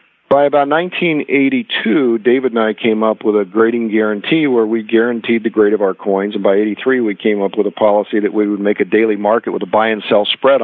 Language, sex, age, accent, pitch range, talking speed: English, male, 50-69, American, 105-125 Hz, 225 wpm